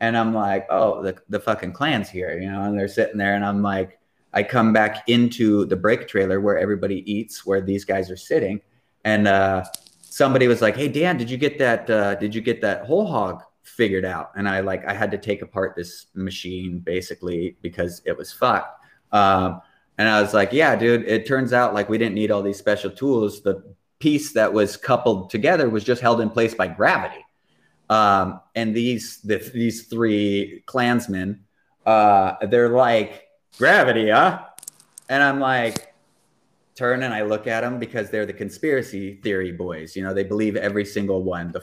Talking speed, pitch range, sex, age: 190 wpm, 95-120 Hz, male, 30-49